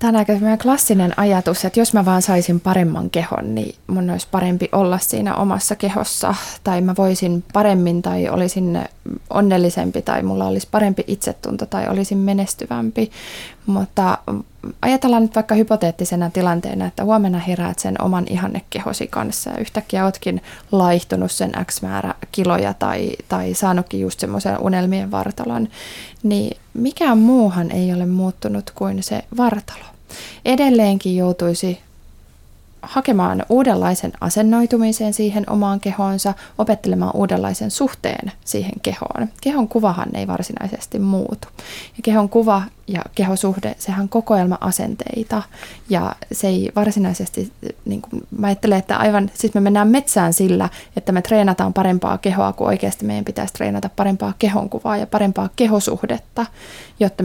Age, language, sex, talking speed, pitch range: 20-39, Finnish, female, 135 wpm, 175-215 Hz